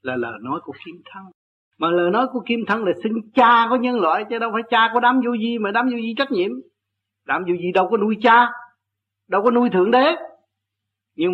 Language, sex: Vietnamese, male